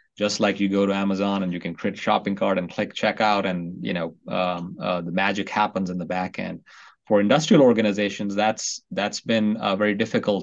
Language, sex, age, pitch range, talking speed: English, male, 30-49, 95-110 Hz, 215 wpm